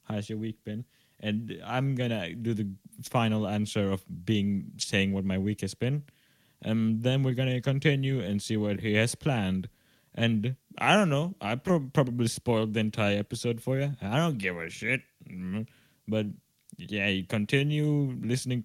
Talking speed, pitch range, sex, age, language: 170 wpm, 105-140 Hz, male, 20-39, English